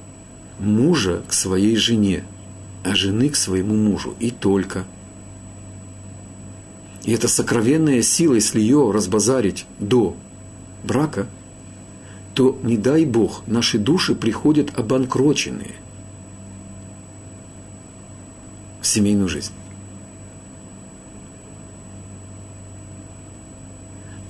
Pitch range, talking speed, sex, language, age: 95-110 Hz, 75 wpm, male, Russian, 50-69